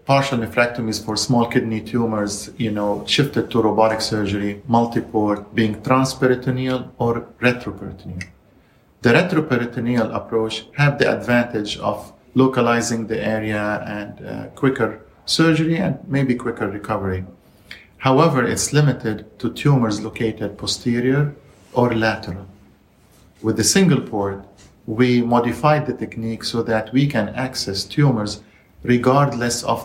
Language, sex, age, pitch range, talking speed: English, male, 50-69, 105-130 Hz, 120 wpm